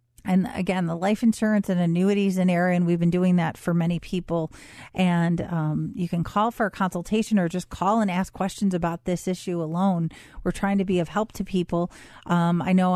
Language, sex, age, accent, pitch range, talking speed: English, female, 40-59, American, 175-205 Hz, 215 wpm